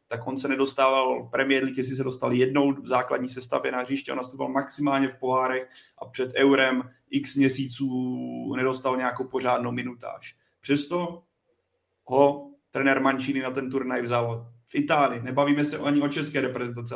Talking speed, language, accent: 160 wpm, Czech, native